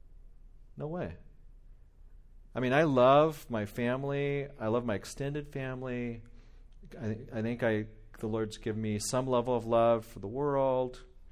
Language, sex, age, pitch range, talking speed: English, male, 40-59, 100-125 Hz, 150 wpm